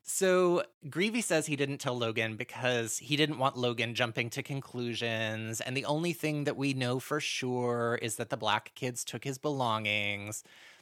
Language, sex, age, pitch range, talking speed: English, male, 30-49, 110-140 Hz, 175 wpm